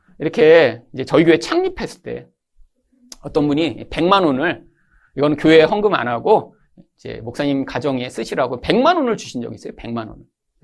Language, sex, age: Korean, male, 40-59